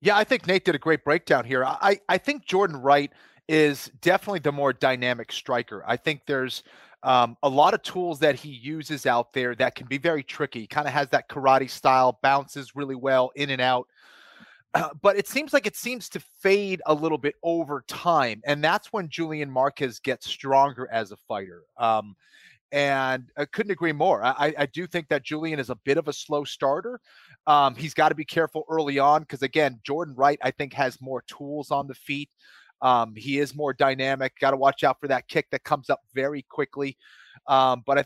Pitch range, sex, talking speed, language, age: 130-150 Hz, male, 210 wpm, English, 30-49